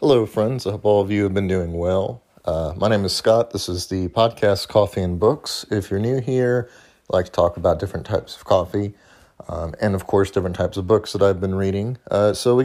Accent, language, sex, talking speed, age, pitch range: American, English, male, 240 wpm, 30-49, 95-110 Hz